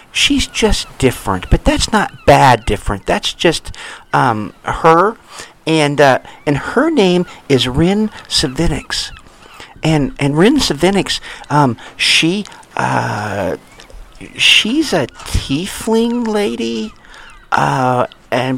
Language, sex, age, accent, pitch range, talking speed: English, male, 50-69, American, 120-175 Hz, 105 wpm